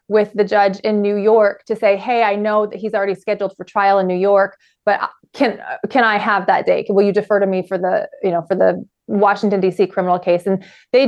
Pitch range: 195-250 Hz